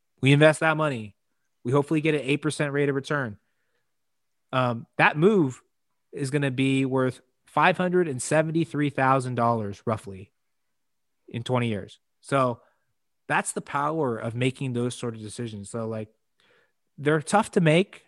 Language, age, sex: English, 30-49, male